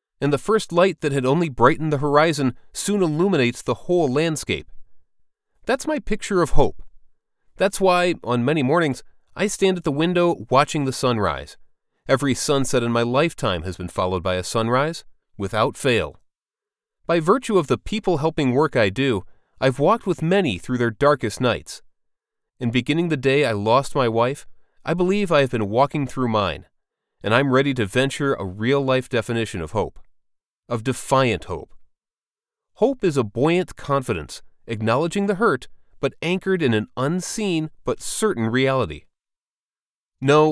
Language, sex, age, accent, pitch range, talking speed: English, male, 30-49, American, 120-175 Hz, 160 wpm